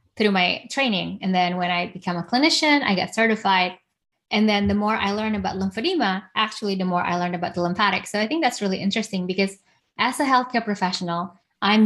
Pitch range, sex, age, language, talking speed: 180-230 Hz, female, 20-39, English, 205 wpm